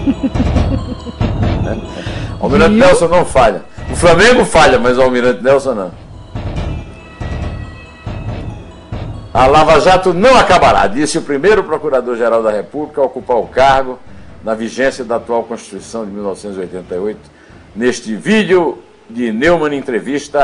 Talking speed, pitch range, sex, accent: 115 wpm, 100-145 Hz, male, Brazilian